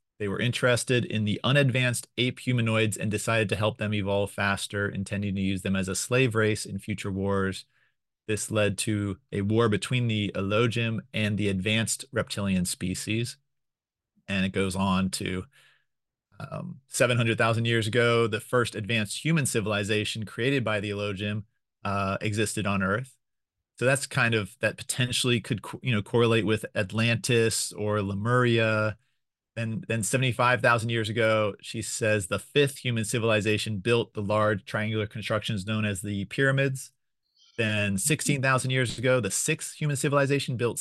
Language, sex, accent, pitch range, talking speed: English, male, American, 105-125 Hz, 155 wpm